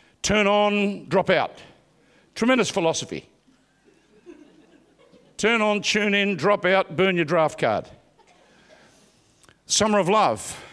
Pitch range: 145-190 Hz